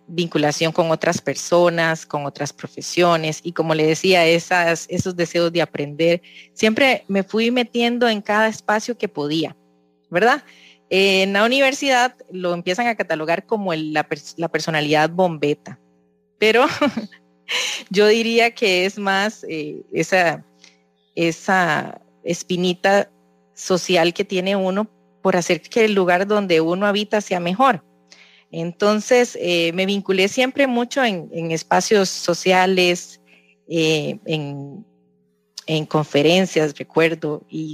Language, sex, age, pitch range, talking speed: English, female, 30-49, 155-210 Hz, 125 wpm